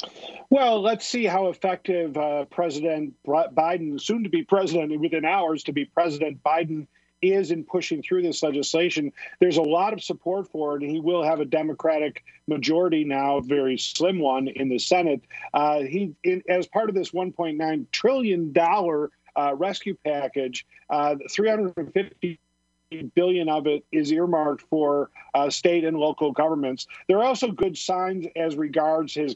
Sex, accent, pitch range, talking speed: male, American, 150-180 Hz, 165 wpm